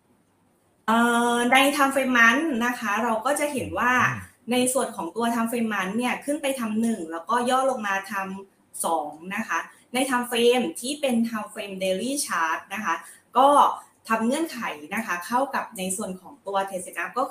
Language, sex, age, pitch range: Thai, female, 20-39, 190-255 Hz